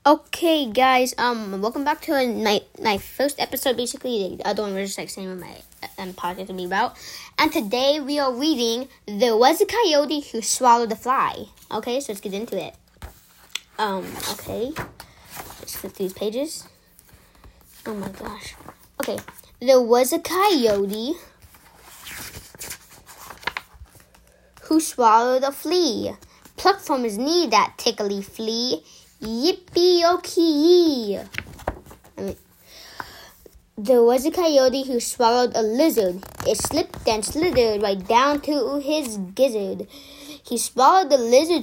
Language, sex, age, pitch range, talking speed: English, female, 10-29, 225-310 Hz, 135 wpm